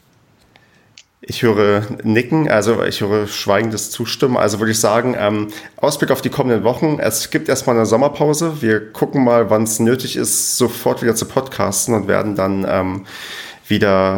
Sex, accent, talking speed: male, German, 165 wpm